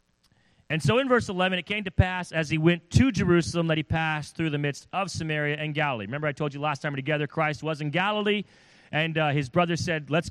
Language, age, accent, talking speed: English, 30-49, American, 245 wpm